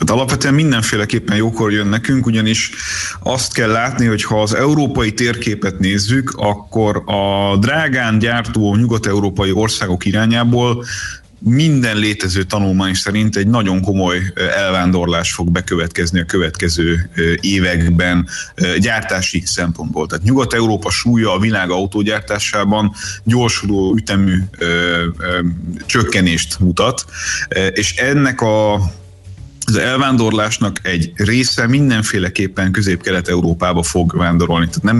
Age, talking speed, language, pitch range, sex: 30-49, 105 wpm, Hungarian, 95-110 Hz, male